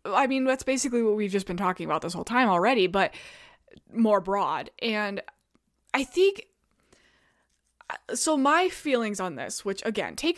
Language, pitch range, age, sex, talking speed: English, 190-260 Hz, 20-39, female, 160 wpm